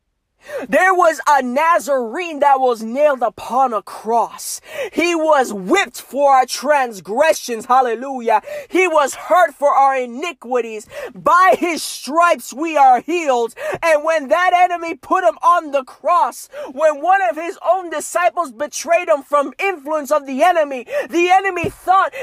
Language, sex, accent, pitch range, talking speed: Spanish, male, American, 280-355 Hz, 145 wpm